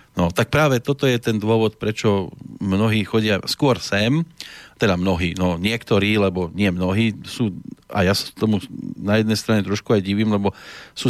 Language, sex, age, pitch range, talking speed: Slovak, male, 40-59, 100-115 Hz, 175 wpm